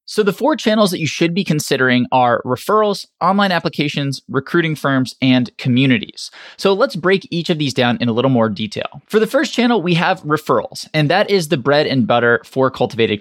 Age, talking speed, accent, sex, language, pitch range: 20-39, 205 wpm, American, male, English, 120-170 Hz